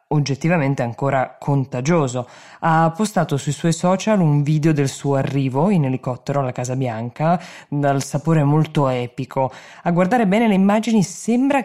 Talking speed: 145 wpm